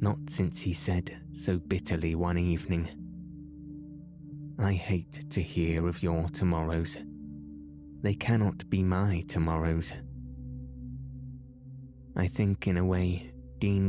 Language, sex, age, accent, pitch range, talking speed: English, male, 20-39, British, 85-115 Hz, 110 wpm